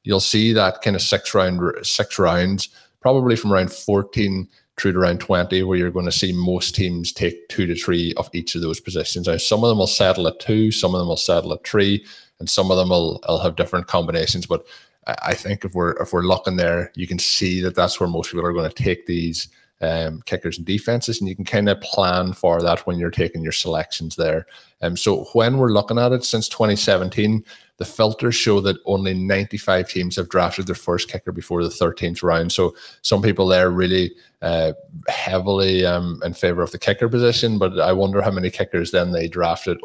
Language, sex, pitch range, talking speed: English, male, 90-105 Hz, 220 wpm